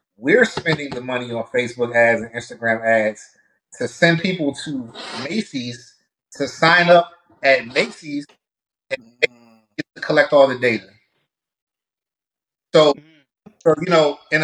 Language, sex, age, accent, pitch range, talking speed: English, male, 30-49, American, 130-165 Hz, 120 wpm